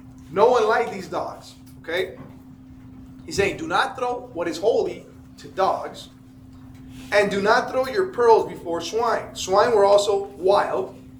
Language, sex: English, male